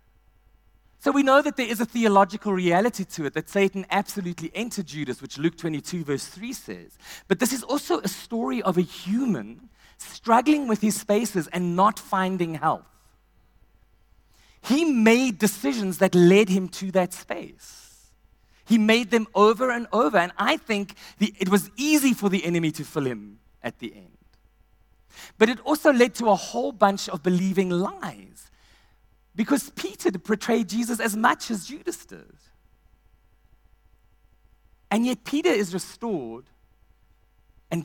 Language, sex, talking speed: English, male, 150 wpm